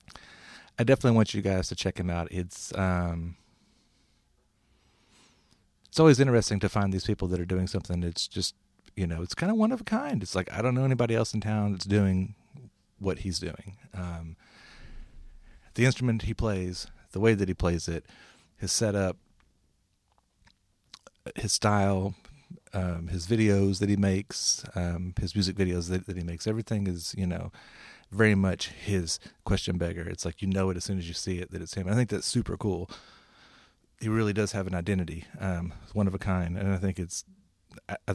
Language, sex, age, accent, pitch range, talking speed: English, male, 40-59, American, 90-110 Hz, 190 wpm